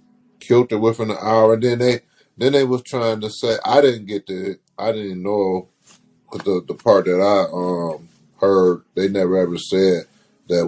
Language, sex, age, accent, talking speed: English, male, 30-49, American, 185 wpm